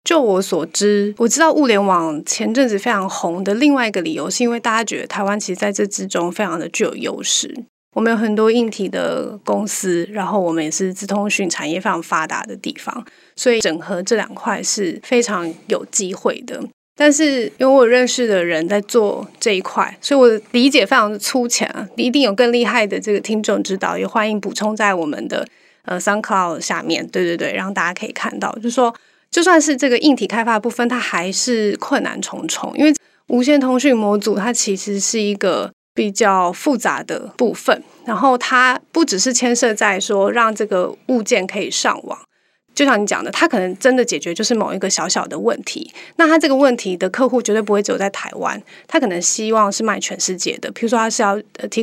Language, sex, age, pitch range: Chinese, female, 20-39, 195-250 Hz